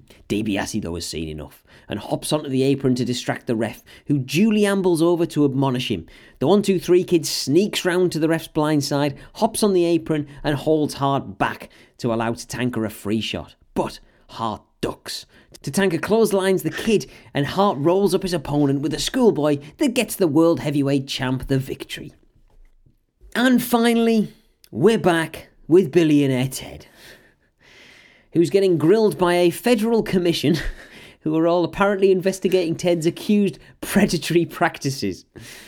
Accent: British